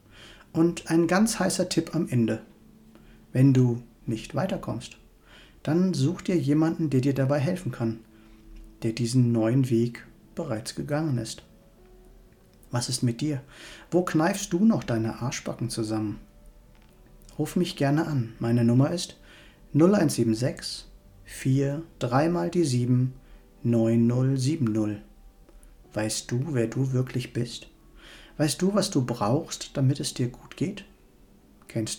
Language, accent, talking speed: German, German, 130 wpm